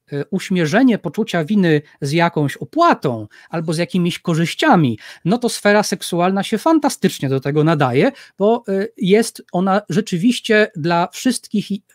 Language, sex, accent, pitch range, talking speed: Polish, male, native, 150-210 Hz, 125 wpm